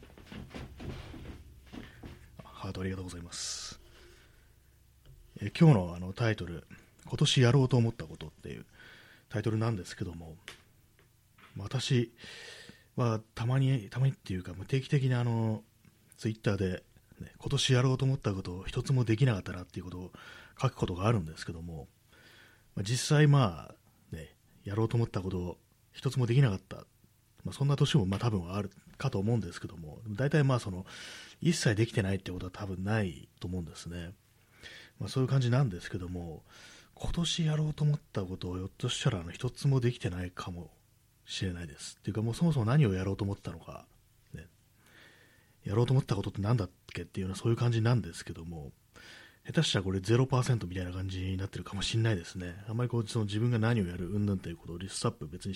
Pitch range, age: 90-125 Hz, 30-49